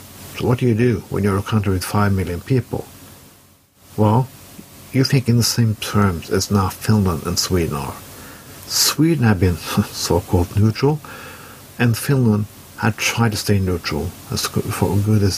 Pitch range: 95-120 Hz